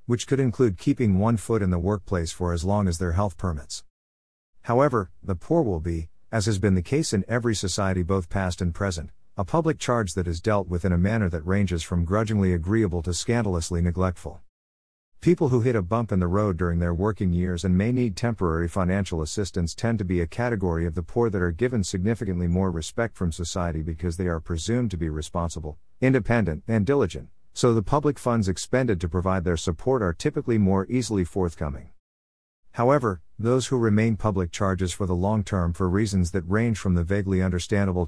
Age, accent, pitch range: 50-69, American, 85-110 Hz